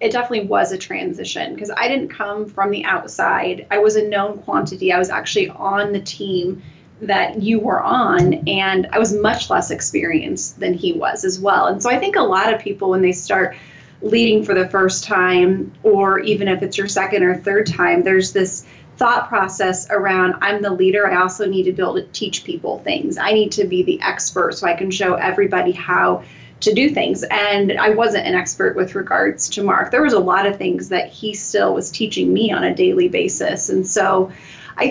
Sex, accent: female, American